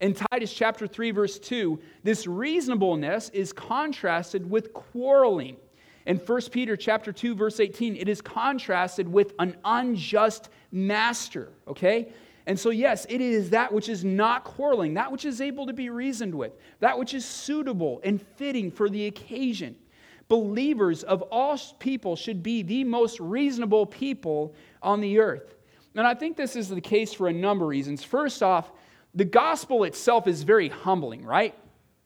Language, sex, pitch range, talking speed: English, male, 185-240 Hz, 165 wpm